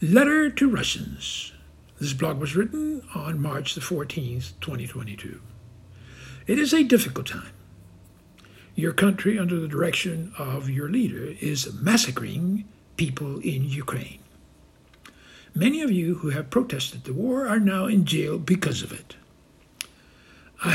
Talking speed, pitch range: 135 wpm, 135-195 Hz